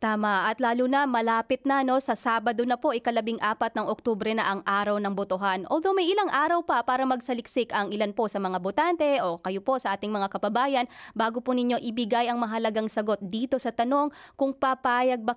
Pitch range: 205-260 Hz